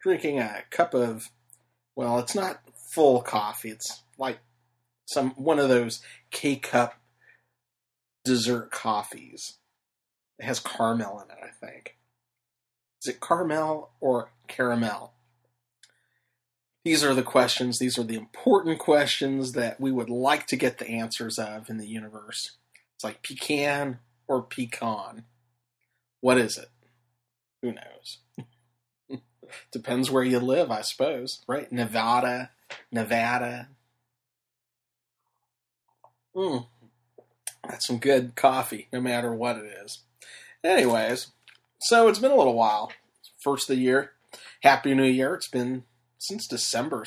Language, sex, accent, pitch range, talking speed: English, male, American, 120-130 Hz, 125 wpm